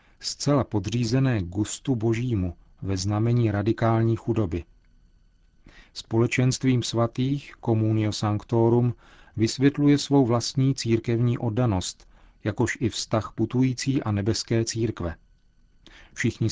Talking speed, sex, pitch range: 90 wpm, male, 105-125 Hz